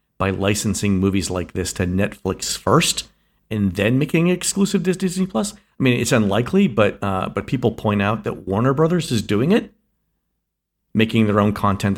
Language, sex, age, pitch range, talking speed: English, male, 50-69, 100-120 Hz, 180 wpm